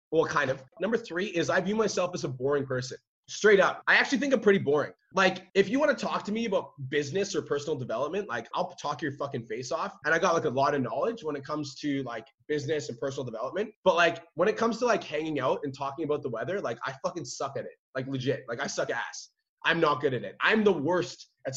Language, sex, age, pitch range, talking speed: English, male, 20-39, 135-190 Hz, 260 wpm